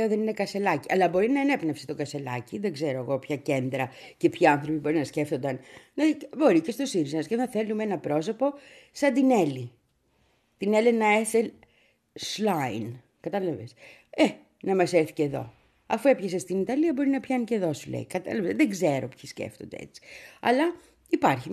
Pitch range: 145-200 Hz